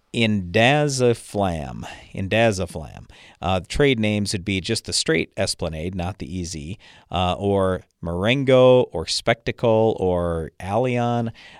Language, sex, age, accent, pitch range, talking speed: English, male, 40-59, American, 95-120 Hz, 110 wpm